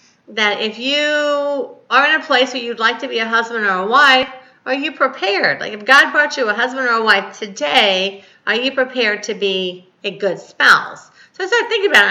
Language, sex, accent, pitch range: English, female, American, 195-270 Hz